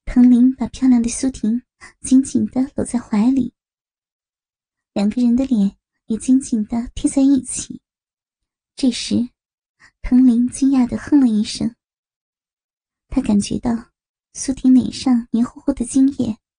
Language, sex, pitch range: Chinese, male, 235-265 Hz